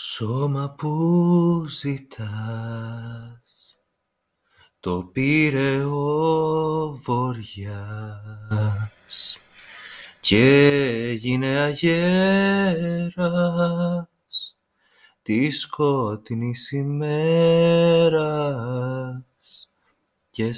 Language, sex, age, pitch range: Greek, male, 30-49, 120-155 Hz